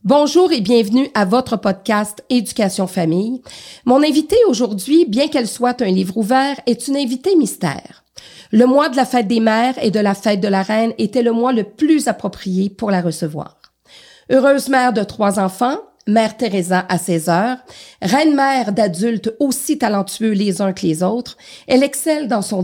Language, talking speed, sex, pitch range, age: French, 180 wpm, female, 200-260 Hz, 40-59